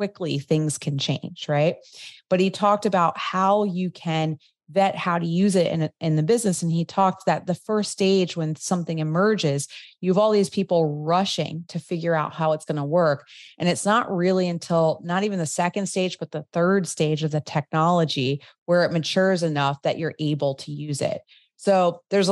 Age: 30-49